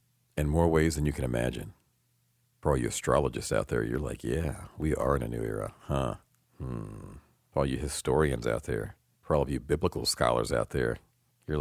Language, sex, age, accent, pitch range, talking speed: English, male, 40-59, American, 75-95 Hz, 200 wpm